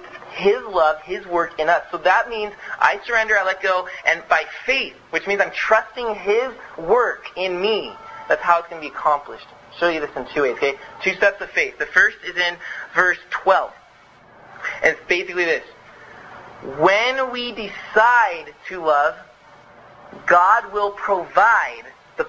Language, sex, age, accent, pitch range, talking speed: English, male, 30-49, American, 190-290 Hz, 170 wpm